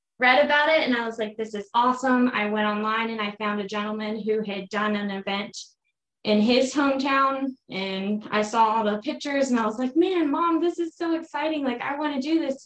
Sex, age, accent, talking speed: female, 20-39, American, 230 wpm